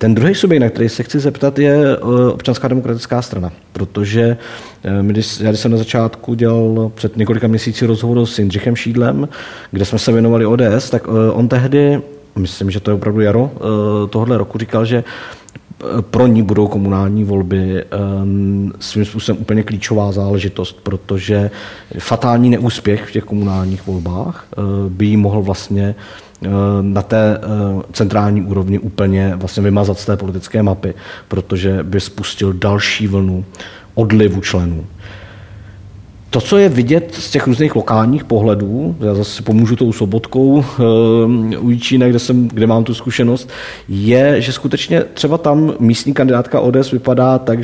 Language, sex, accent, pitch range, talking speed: Czech, male, native, 100-125 Hz, 145 wpm